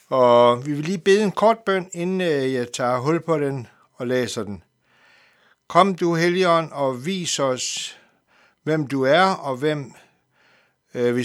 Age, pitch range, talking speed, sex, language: 60-79, 130-185 Hz, 155 wpm, male, Danish